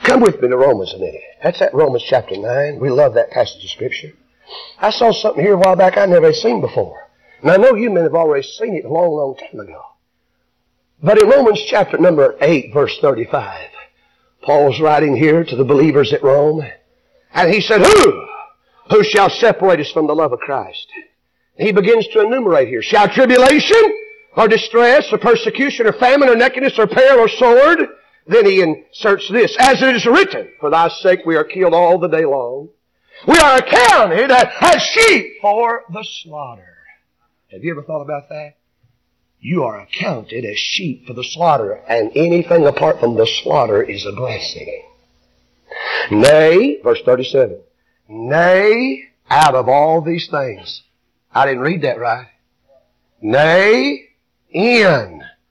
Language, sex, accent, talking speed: English, male, American, 170 wpm